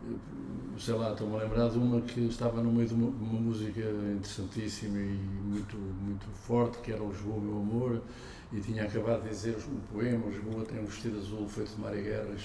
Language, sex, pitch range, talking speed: Portuguese, male, 110-145 Hz, 200 wpm